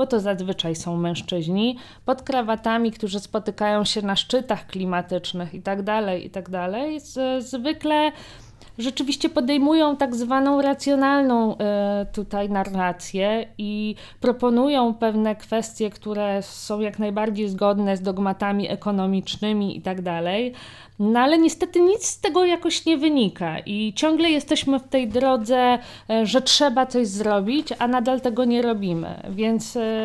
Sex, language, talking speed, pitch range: female, Polish, 140 wpm, 200-250 Hz